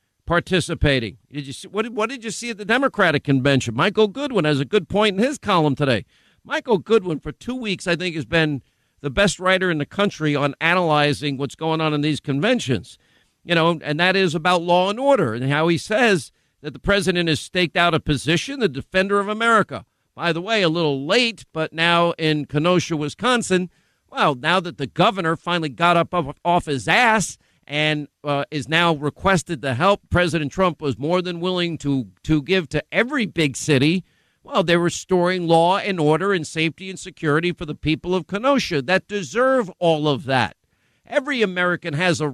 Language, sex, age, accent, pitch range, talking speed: English, male, 50-69, American, 150-195 Hz, 195 wpm